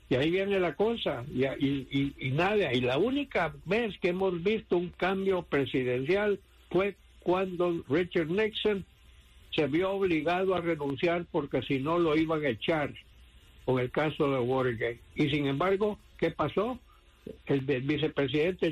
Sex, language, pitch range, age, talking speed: male, English, 140-185 Hz, 60-79, 155 wpm